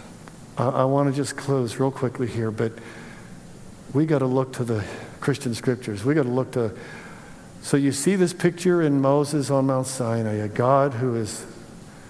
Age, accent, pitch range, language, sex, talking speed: 50-69, American, 130-160 Hz, English, male, 180 wpm